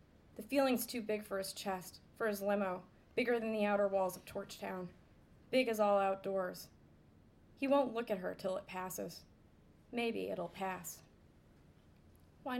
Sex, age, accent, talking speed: female, 20-39, American, 155 wpm